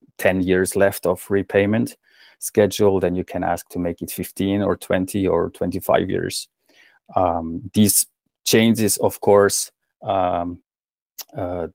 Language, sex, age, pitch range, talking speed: Finnish, male, 30-49, 90-105 Hz, 135 wpm